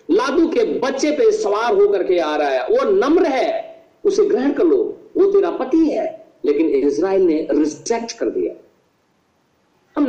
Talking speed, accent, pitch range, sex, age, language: 165 wpm, native, 310-405 Hz, male, 50-69, Hindi